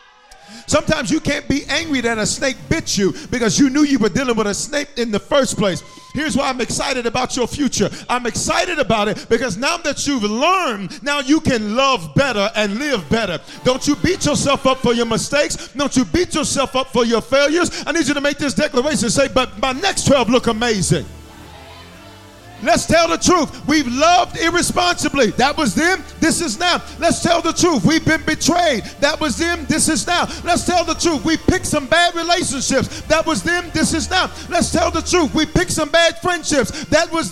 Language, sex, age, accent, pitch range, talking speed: English, male, 40-59, American, 185-290 Hz, 205 wpm